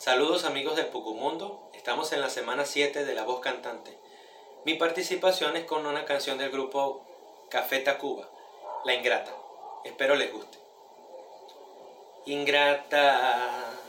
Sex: male